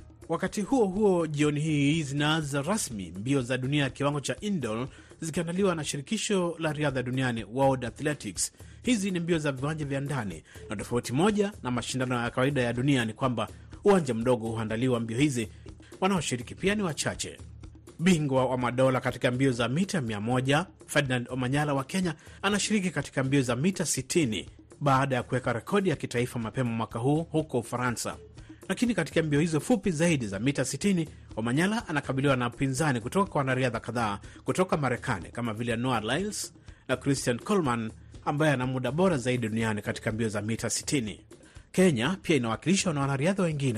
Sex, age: male, 30-49